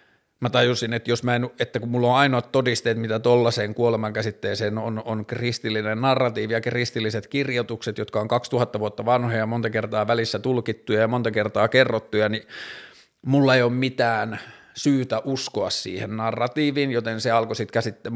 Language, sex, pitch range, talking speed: Finnish, male, 110-125 Hz, 165 wpm